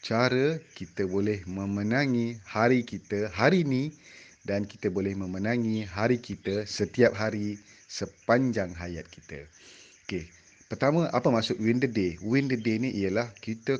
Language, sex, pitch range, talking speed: Malay, male, 100-130 Hz, 140 wpm